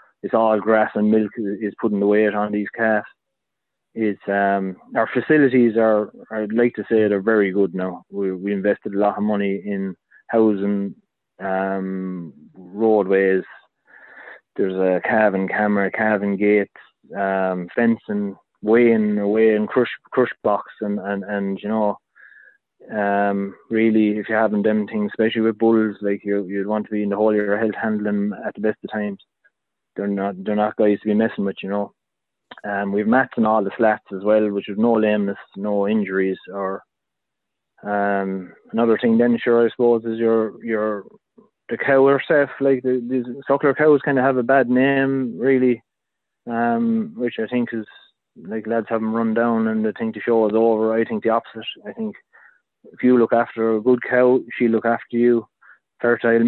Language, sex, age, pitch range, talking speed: English, male, 20-39, 100-115 Hz, 185 wpm